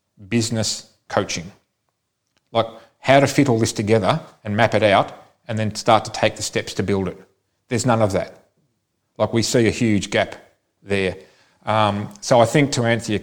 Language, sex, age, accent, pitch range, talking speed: English, male, 40-59, Australian, 105-120 Hz, 185 wpm